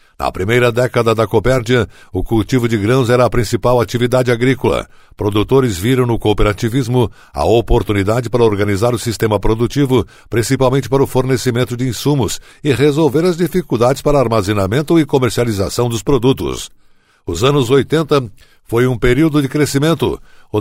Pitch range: 115-135 Hz